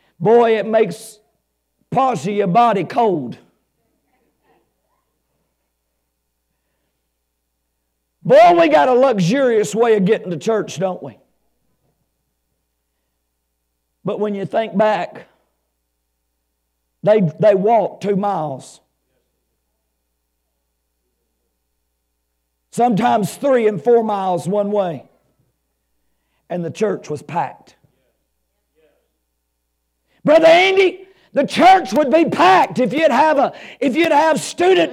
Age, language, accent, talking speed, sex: 50-69, English, American, 100 wpm, male